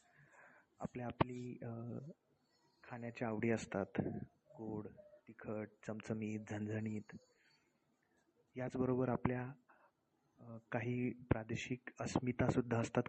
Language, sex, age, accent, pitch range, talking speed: Marathi, male, 20-39, native, 110-125 Hz, 70 wpm